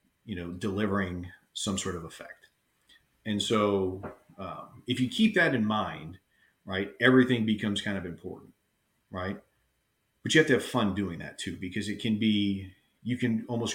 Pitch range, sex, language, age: 95-115 Hz, male, English, 40-59